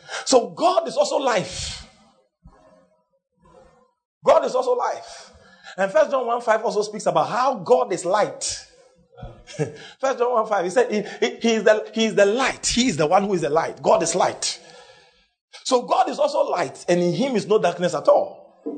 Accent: Nigerian